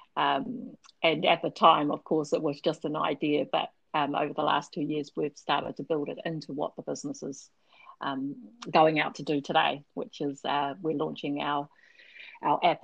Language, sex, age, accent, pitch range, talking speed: English, female, 40-59, Australian, 150-195 Hz, 200 wpm